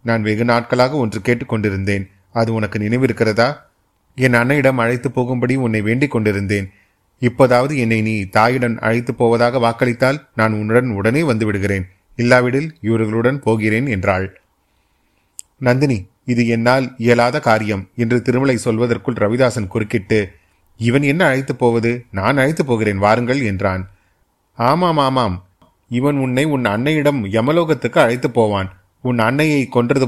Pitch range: 105-130 Hz